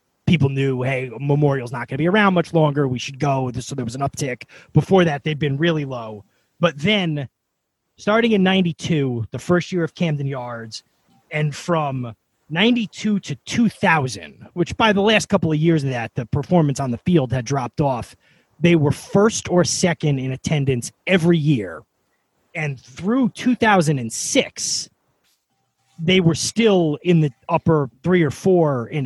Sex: male